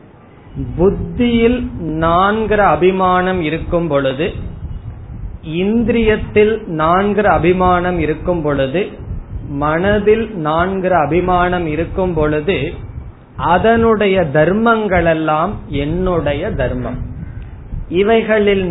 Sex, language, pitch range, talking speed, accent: male, Tamil, 145-195 Hz, 65 wpm, native